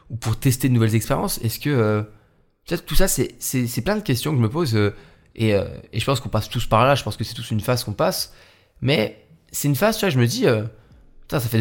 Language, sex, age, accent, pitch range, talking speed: French, male, 20-39, French, 105-130 Hz, 285 wpm